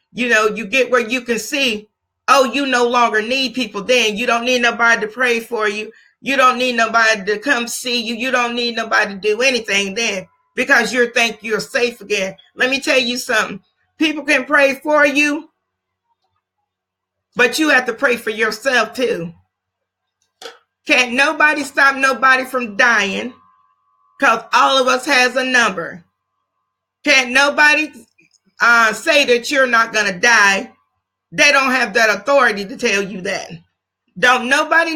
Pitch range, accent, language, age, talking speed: 210-280 Hz, American, English, 40-59, 165 wpm